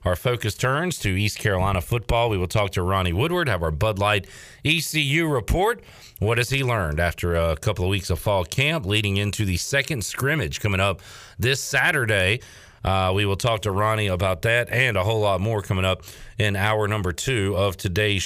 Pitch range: 95-120 Hz